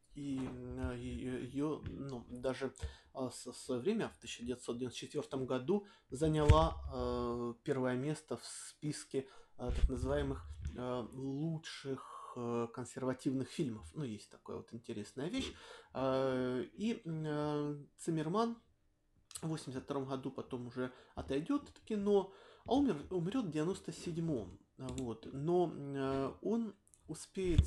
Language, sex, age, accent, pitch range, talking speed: Russian, male, 20-39, native, 130-165 Hz, 100 wpm